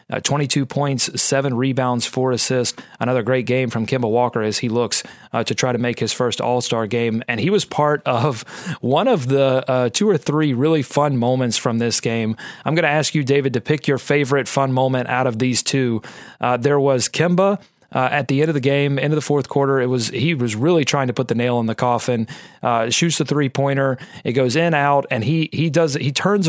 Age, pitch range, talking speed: 30-49, 125-150 Hz, 235 wpm